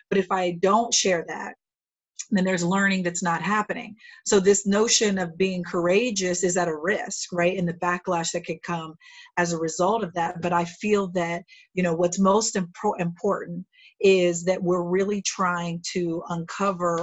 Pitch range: 175-195 Hz